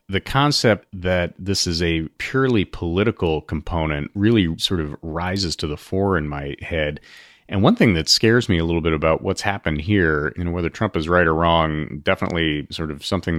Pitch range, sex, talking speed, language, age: 80-95 Hz, male, 190 wpm, English, 30-49